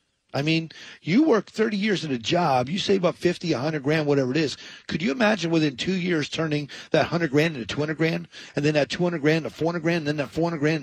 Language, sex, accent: English, male, American